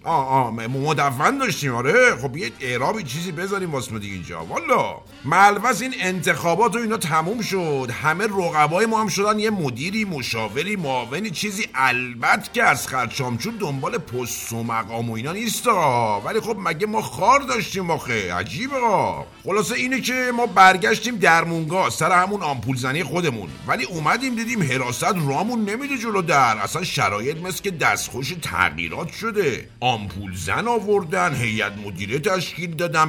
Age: 50-69